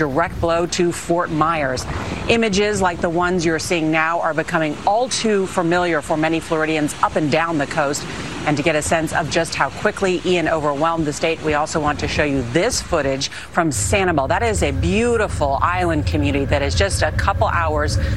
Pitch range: 145-175 Hz